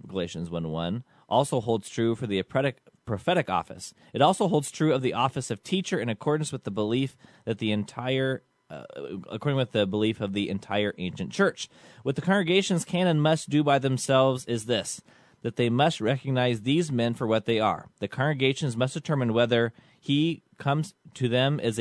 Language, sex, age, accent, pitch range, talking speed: English, male, 30-49, American, 110-140 Hz, 185 wpm